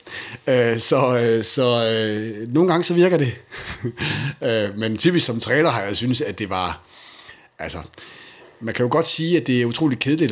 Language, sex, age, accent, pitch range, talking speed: Danish, male, 60-79, native, 105-135 Hz, 165 wpm